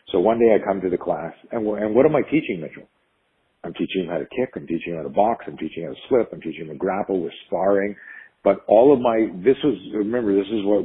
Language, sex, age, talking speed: English, male, 50-69, 275 wpm